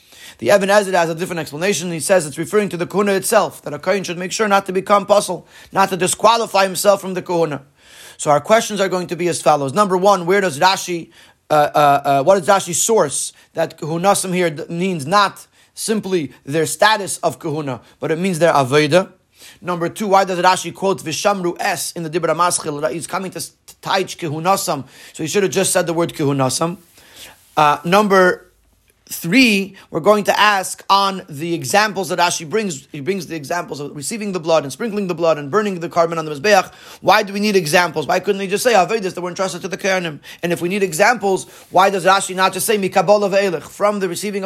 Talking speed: 215 wpm